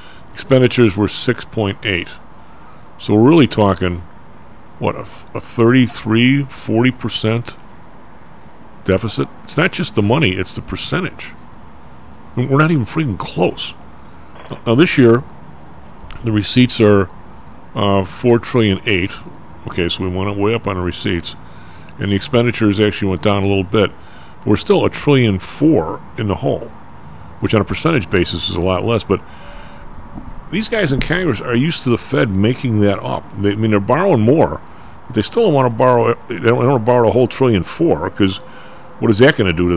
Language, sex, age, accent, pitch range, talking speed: English, male, 50-69, American, 90-120 Hz, 175 wpm